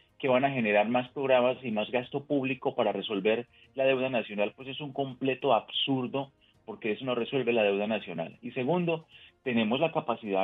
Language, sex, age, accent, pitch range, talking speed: Spanish, male, 30-49, Colombian, 110-145 Hz, 185 wpm